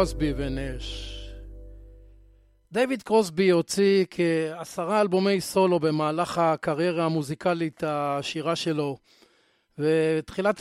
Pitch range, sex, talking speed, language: 160-190 Hz, male, 80 wpm, Hebrew